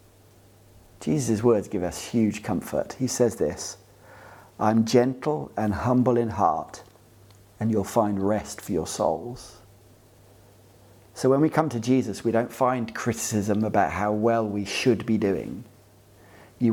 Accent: British